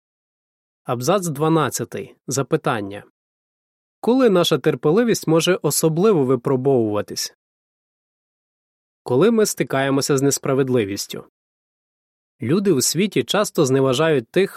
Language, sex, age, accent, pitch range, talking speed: Ukrainian, male, 20-39, native, 125-165 Hz, 80 wpm